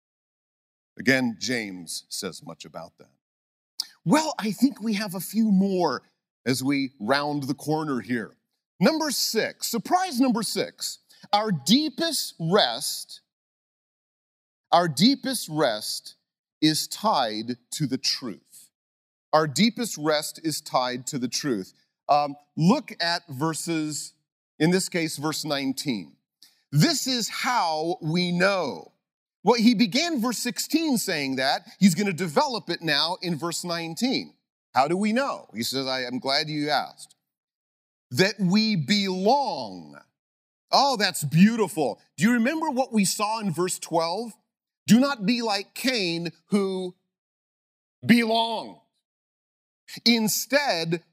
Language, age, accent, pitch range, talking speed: English, 40-59, American, 150-225 Hz, 125 wpm